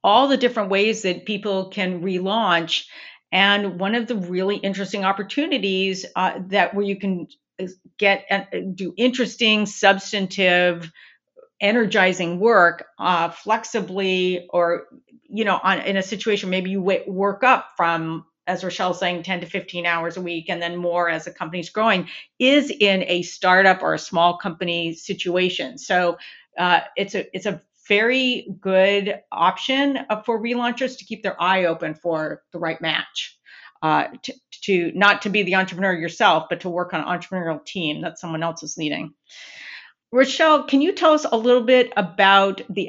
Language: English